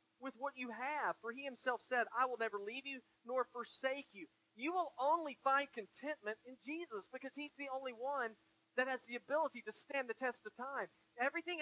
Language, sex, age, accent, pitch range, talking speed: English, male, 40-59, American, 220-280 Hz, 200 wpm